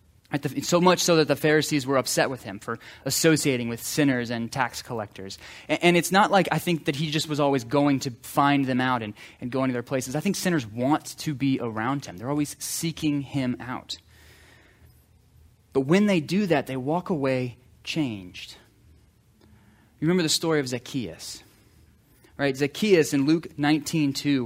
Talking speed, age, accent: 180 wpm, 20-39, American